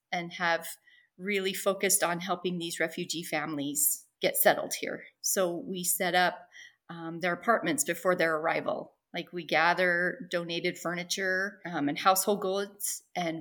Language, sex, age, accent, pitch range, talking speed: English, female, 40-59, American, 175-210 Hz, 145 wpm